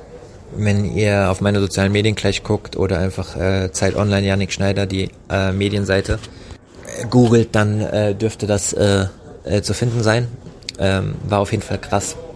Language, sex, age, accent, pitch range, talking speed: German, male, 20-39, German, 95-105 Hz, 170 wpm